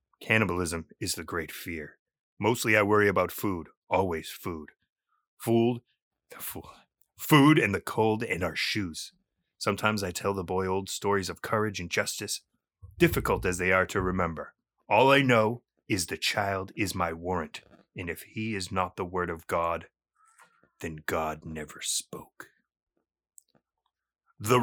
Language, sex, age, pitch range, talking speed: English, male, 30-49, 100-135 Hz, 145 wpm